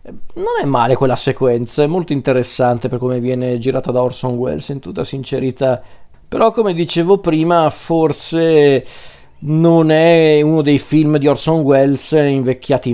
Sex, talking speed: male, 150 wpm